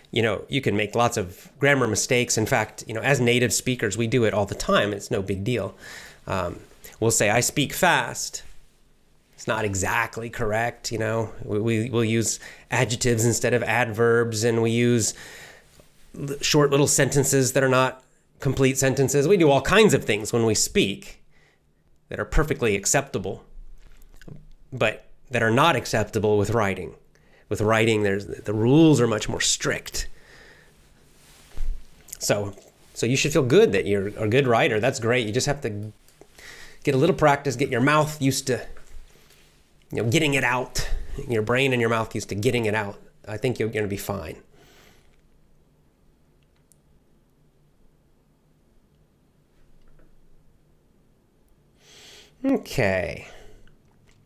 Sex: male